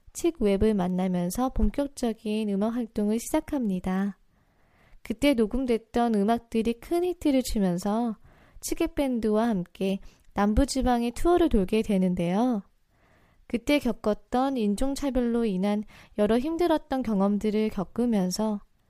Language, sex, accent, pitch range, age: Korean, female, native, 200-250 Hz, 20-39